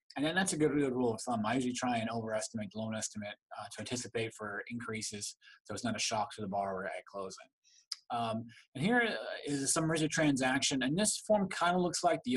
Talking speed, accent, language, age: 230 wpm, American, English, 20-39